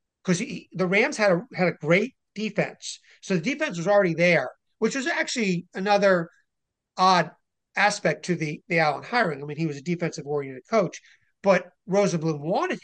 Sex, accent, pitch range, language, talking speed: male, American, 155-190 Hz, English, 170 wpm